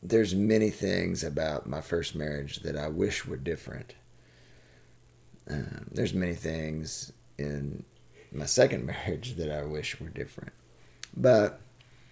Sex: male